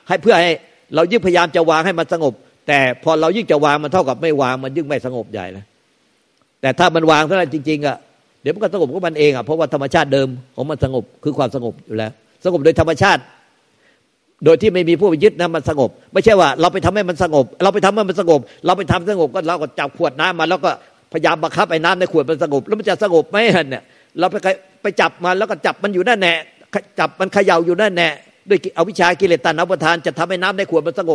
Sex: male